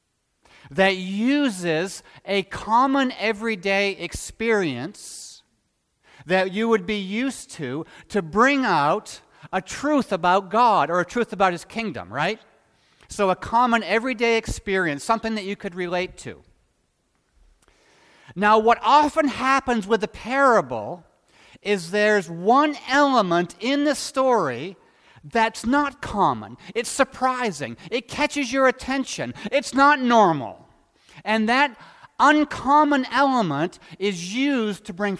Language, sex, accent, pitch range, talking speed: English, male, American, 190-265 Hz, 120 wpm